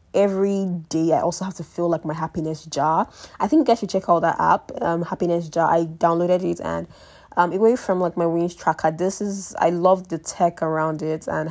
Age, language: 10-29, English